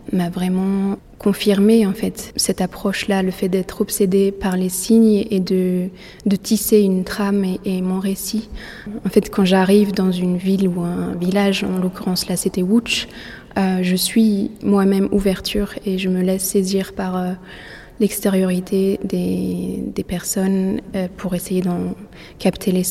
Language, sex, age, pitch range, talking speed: French, female, 20-39, 185-205 Hz, 160 wpm